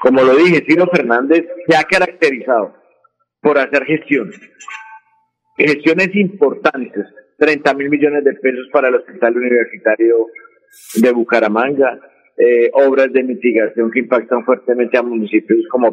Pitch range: 120-155 Hz